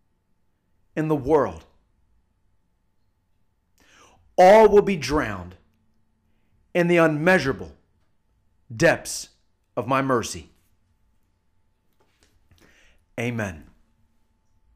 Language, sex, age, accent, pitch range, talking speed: English, male, 40-59, American, 95-155 Hz, 60 wpm